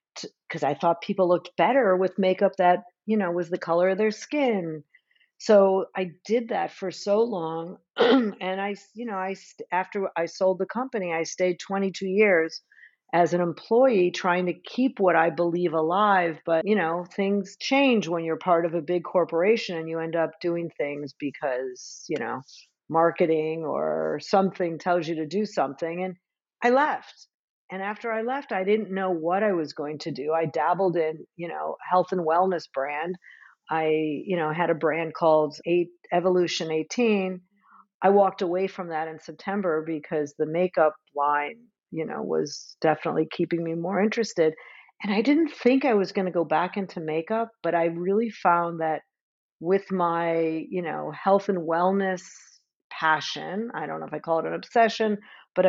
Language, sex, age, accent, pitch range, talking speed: English, female, 50-69, American, 165-195 Hz, 180 wpm